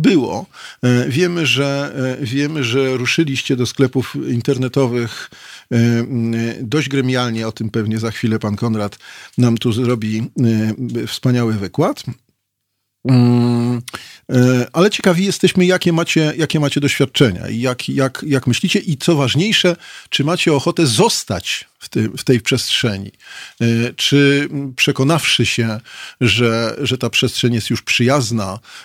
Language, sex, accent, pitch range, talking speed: Polish, male, native, 115-140 Hz, 115 wpm